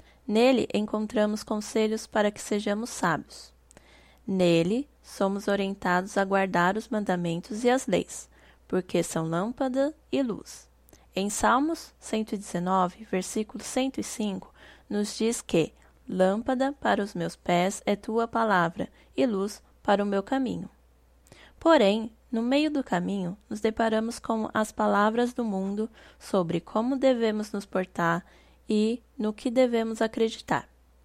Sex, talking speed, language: female, 130 wpm, Portuguese